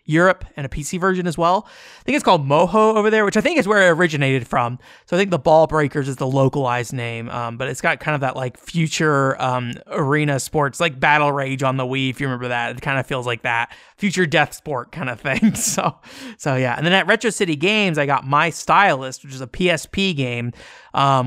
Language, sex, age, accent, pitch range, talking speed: English, male, 20-39, American, 135-185 Hz, 240 wpm